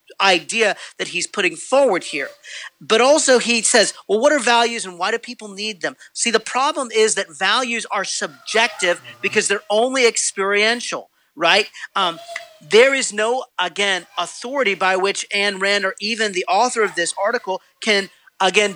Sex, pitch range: male, 195-245 Hz